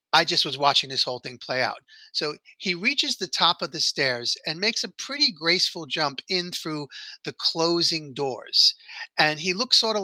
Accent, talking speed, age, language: American, 195 wpm, 50-69, English